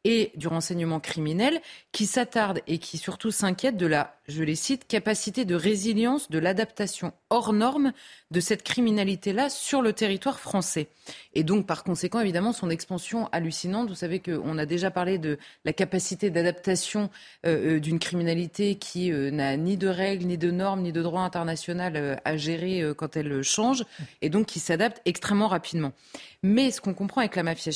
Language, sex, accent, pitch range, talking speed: French, female, French, 170-225 Hz, 175 wpm